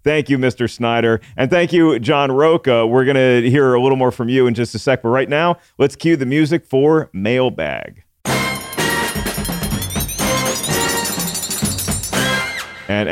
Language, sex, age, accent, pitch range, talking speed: English, male, 40-59, American, 105-145 Hz, 145 wpm